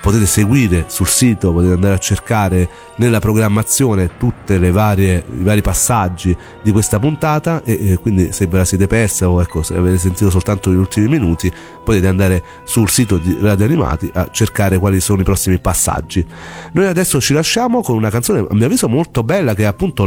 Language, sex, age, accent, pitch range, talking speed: Italian, male, 40-59, native, 95-115 Hz, 190 wpm